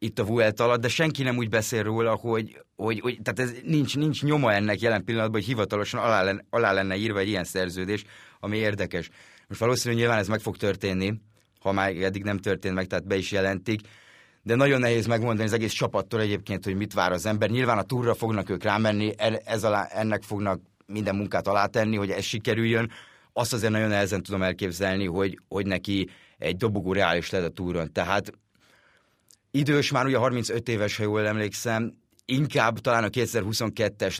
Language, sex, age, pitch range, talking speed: Hungarian, male, 30-49, 100-120 Hz, 190 wpm